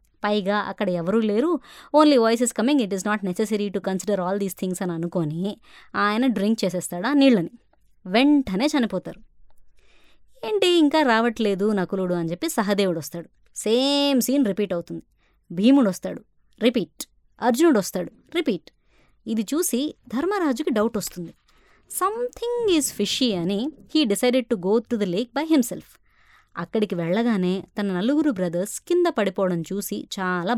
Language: Telugu